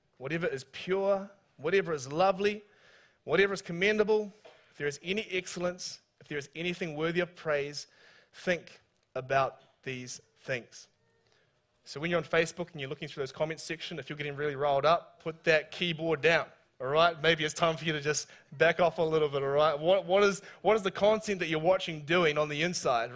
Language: English